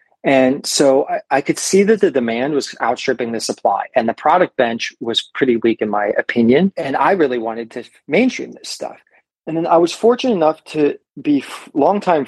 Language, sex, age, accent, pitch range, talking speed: English, male, 30-49, American, 115-135 Hz, 200 wpm